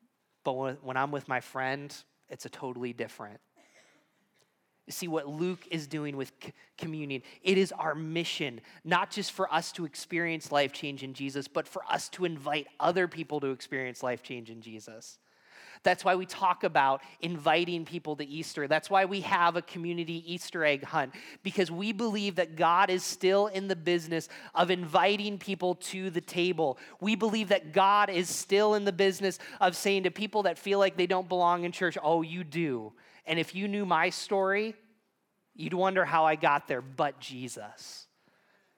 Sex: male